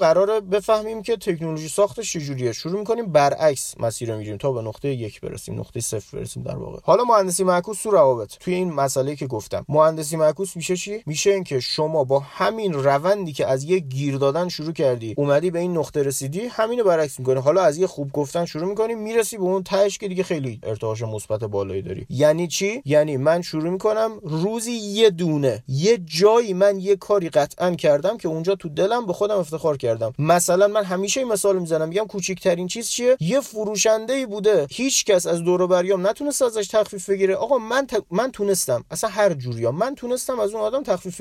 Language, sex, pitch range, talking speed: Persian, male, 140-205 Hz, 195 wpm